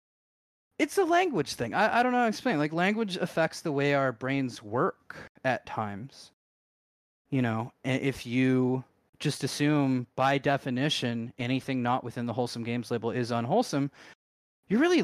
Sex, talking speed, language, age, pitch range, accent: male, 160 wpm, English, 20-39, 125-155 Hz, American